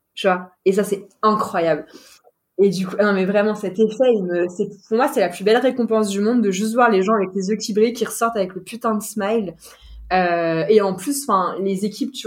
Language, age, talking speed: French, 20-39, 245 wpm